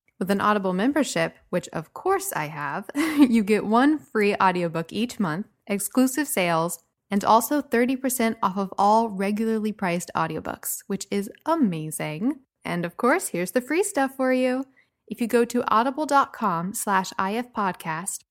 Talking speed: 150 wpm